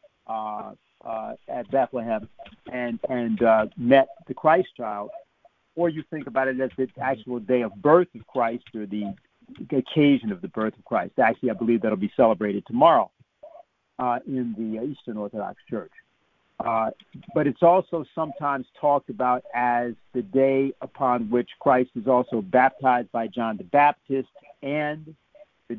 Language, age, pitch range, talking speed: English, 50-69, 120-155 Hz, 155 wpm